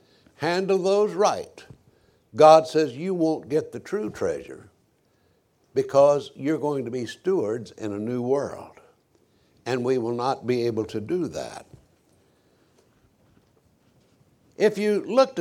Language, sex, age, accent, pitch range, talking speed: English, male, 60-79, American, 130-200 Hz, 130 wpm